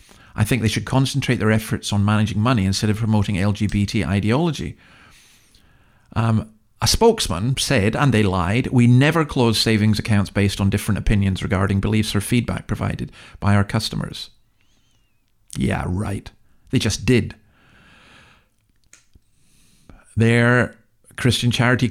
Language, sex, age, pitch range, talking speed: English, male, 50-69, 105-125 Hz, 130 wpm